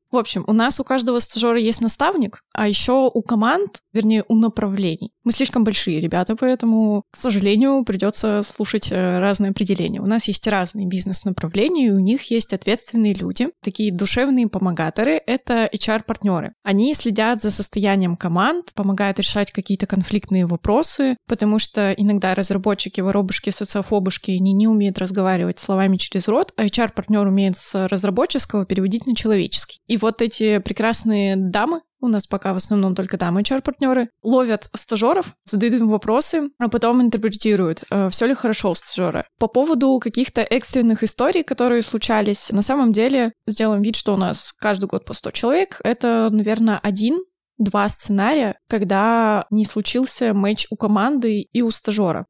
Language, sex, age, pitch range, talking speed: Russian, female, 20-39, 200-235 Hz, 155 wpm